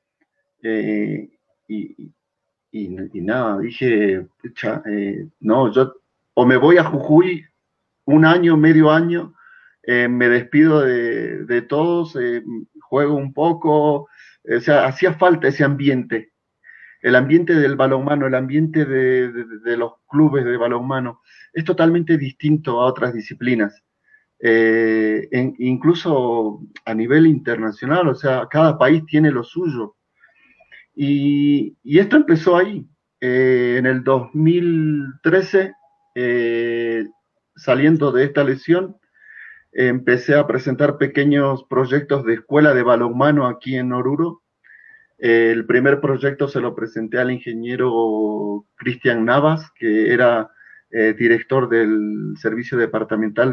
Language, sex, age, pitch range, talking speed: Portuguese, male, 40-59, 120-160 Hz, 120 wpm